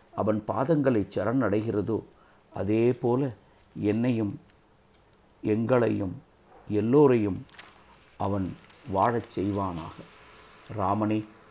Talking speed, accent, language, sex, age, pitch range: 70 wpm, native, Tamil, male, 50-69, 105-130 Hz